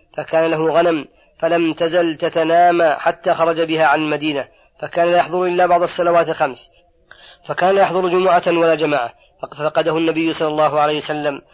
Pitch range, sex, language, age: 155-170 Hz, female, Arabic, 40-59